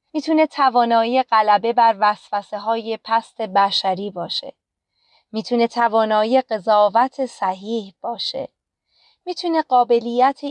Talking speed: 85 wpm